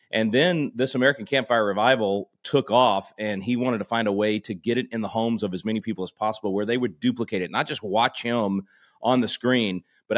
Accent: American